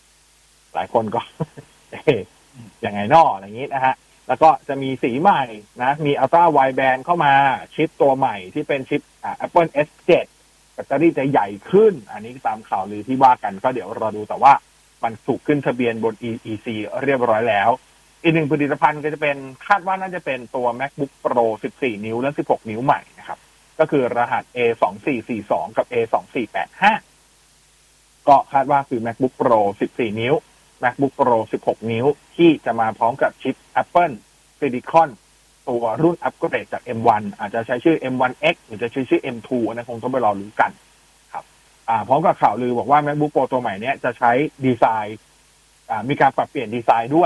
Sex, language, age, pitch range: male, Thai, 30-49, 120-155 Hz